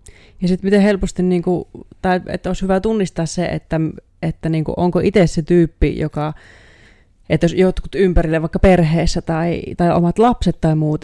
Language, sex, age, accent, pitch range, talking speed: Finnish, female, 30-49, native, 155-180 Hz, 180 wpm